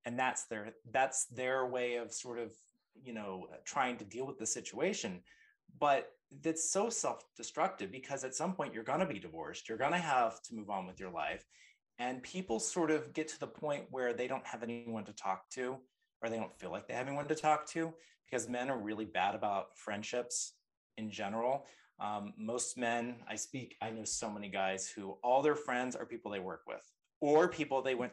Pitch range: 115-150 Hz